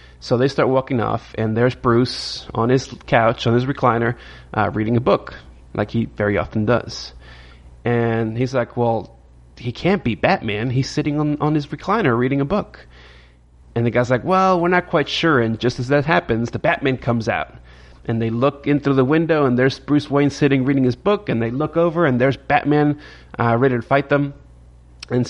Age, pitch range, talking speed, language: 30-49, 100-135 Hz, 205 wpm, English